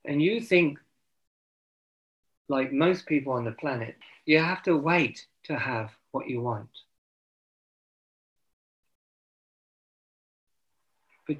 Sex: male